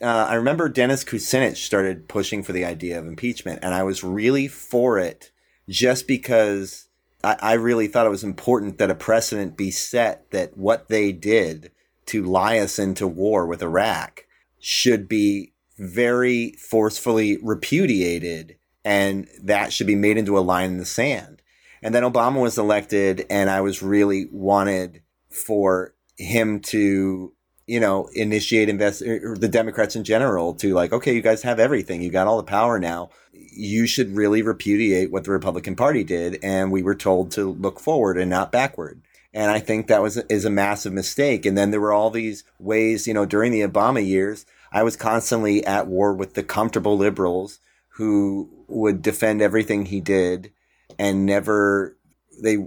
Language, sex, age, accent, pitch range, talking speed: English, male, 30-49, American, 95-110 Hz, 175 wpm